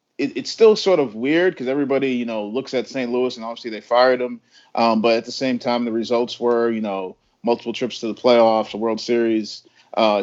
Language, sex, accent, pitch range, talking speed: English, male, American, 110-130 Hz, 225 wpm